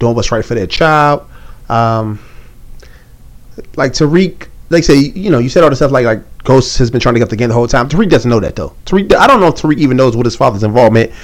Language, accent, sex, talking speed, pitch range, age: English, American, male, 260 wpm, 115-140 Hz, 30-49